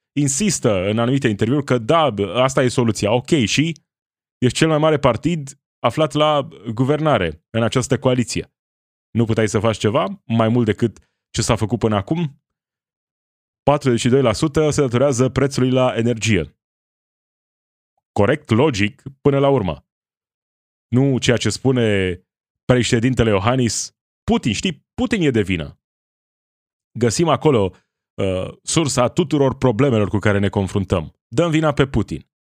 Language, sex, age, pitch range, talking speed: Romanian, male, 20-39, 100-135 Hz, 130 wpm